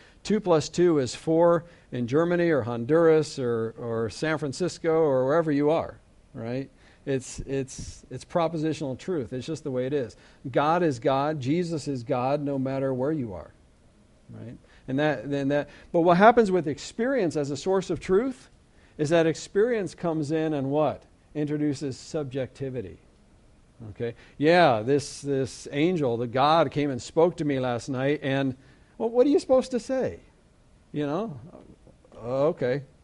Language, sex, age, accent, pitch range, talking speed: English, male, 50-69, American, 130-165 Hz, 165 wpm